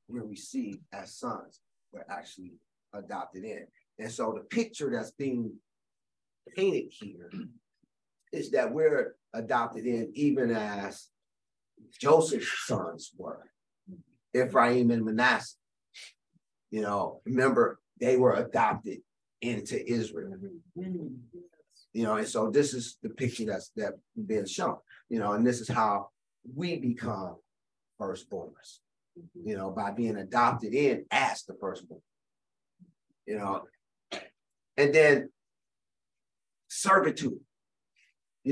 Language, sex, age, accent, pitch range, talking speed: English, male, 30-49, American, 115-150 Hz, 115 wpm